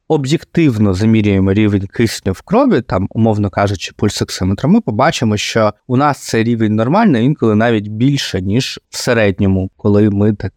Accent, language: native, Ukrainian